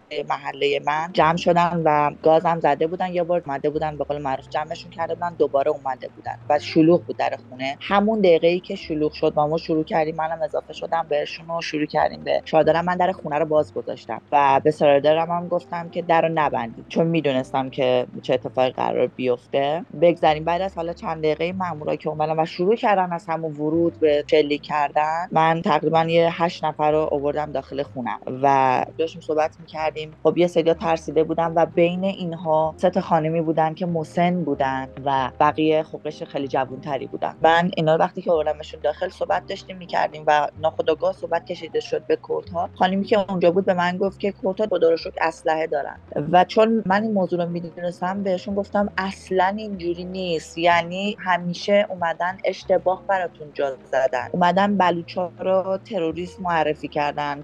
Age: 30-49